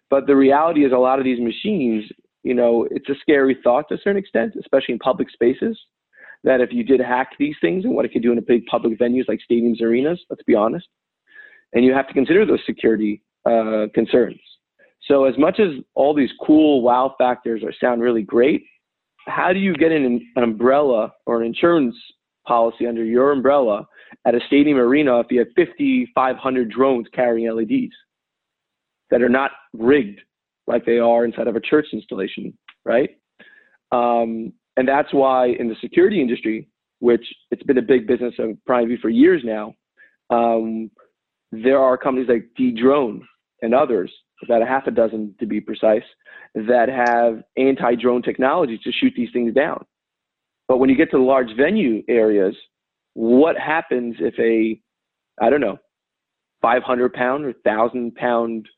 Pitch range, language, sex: 115-135 Hz, English, male